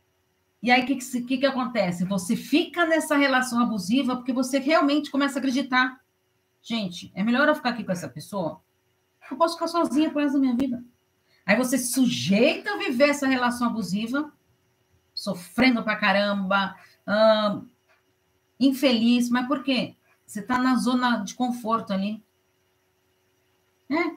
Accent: Brazilian